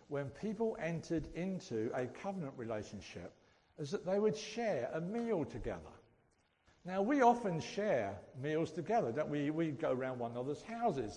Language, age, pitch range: English, 60-79, 145-225 Hz